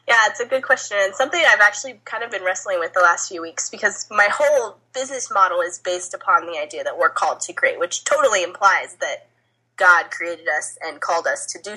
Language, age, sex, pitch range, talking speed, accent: English, 10-29, female, 180-275 Hz, 230 wpm, American